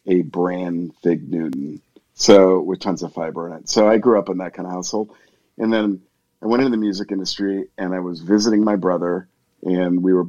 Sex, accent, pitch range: male, American, 90-105 Hz